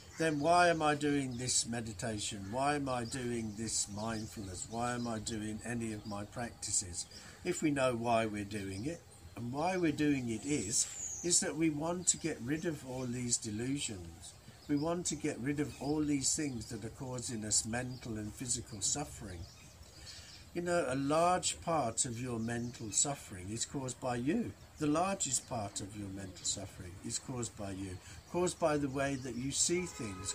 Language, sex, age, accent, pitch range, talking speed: English, male, 50-69, British, 105-150 Hz, 185 wpm